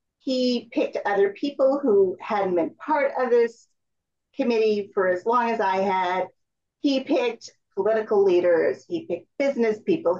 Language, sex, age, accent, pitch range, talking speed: English, female, 40-59, American, 215-320 Hz, 145 wpm